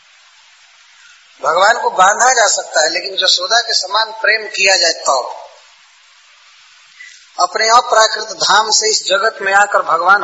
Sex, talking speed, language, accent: male, 140 wpm, English, Indian